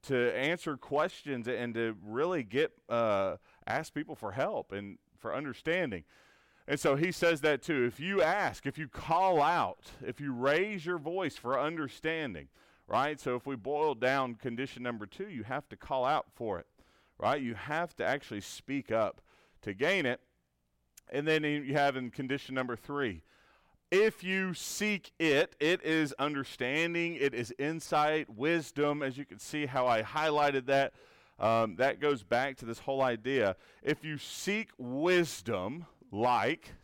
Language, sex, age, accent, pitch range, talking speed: English, male, 40-59, American, 120-155 Hz, 165 wpm